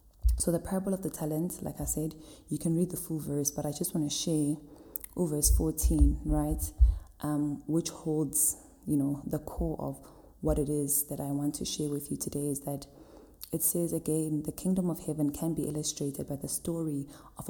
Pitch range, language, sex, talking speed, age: 140-155 Hz, English, female, 200 wpm, 20-39